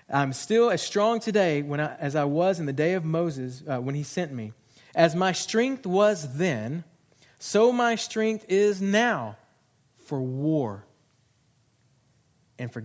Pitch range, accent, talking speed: 125-155 Hz, American, 160 wpm